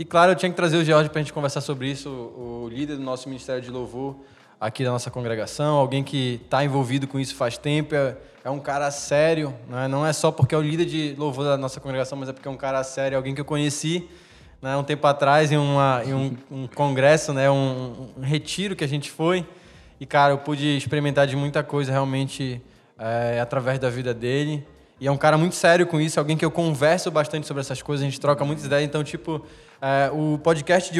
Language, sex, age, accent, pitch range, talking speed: Portuguese, male, 20-39, Brazilian, 135-165 Hz, 230 wpm